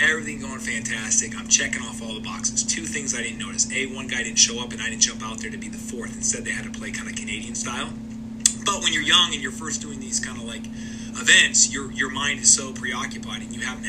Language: English